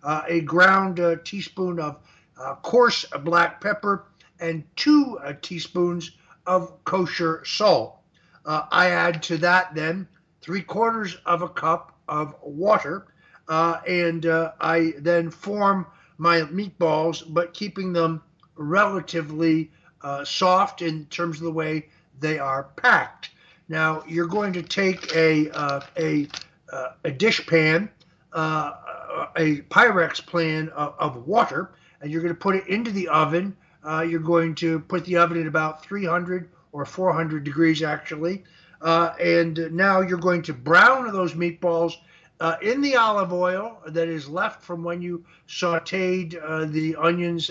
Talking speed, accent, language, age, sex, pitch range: 150 wpm, American, English, 60-79, male, 160-180 Hz